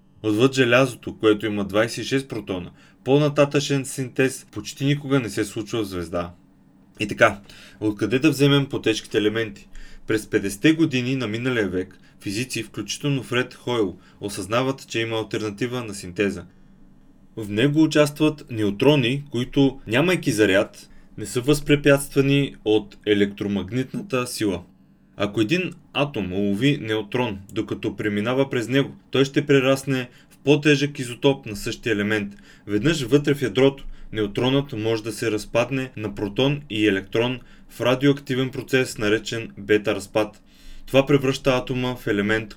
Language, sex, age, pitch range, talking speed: Bulgarian, male, 20-39, 105-135 Hz, 130 wpm